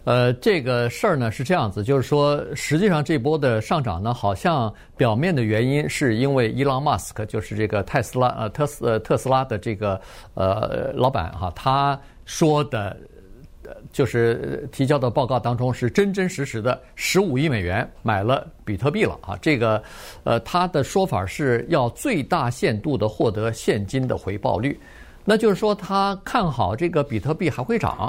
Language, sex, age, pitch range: Chinese, male, 50-69, 115-175 Hz